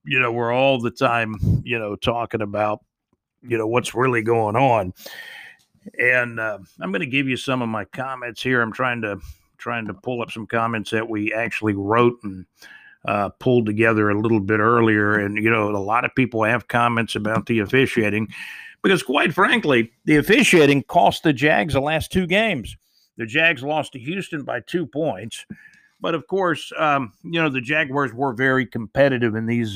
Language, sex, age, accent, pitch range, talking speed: English, male, 50-69, American, 110-140 Hz, 190 wpm